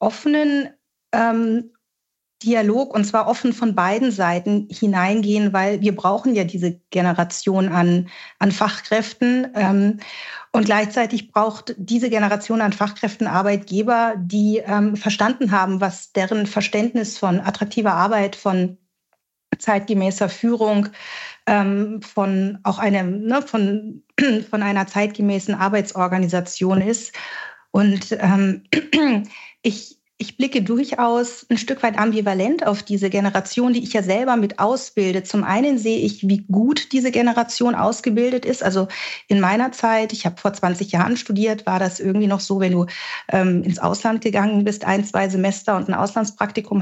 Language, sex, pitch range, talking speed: German, female, 195-230 Hz, 140 wpm